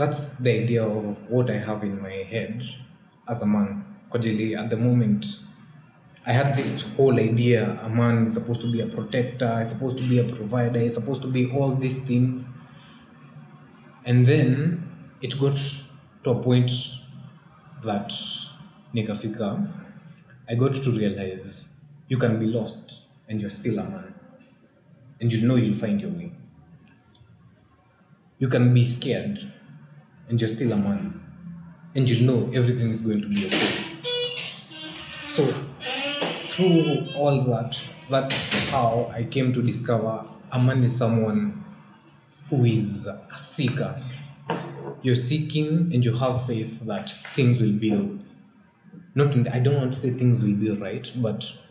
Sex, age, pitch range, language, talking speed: male, 20-39, 115-150 Hz, Swahili, 150 wpm